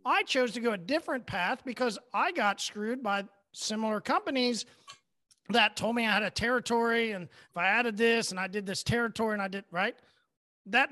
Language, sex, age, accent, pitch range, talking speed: English, male, 40-59, American, 200-255 Hz, 200 wpm